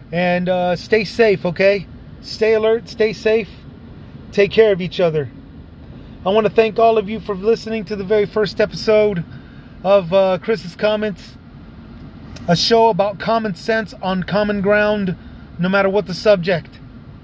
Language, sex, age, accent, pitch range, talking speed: English, male, 30-49, American, 165-210 Hz, 155 wpm